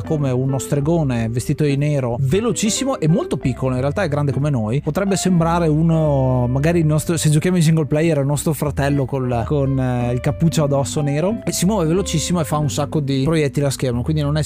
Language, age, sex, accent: Italian, 30-49, male, native